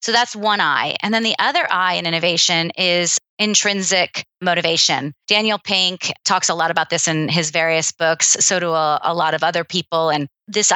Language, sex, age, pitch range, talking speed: English, female, 30-49, 170-205 Hz, 195 wpm